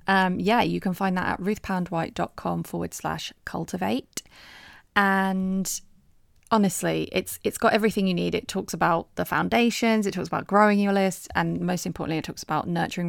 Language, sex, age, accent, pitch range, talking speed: English, female, 20-39, British, 165-195 Hz, 170 wpm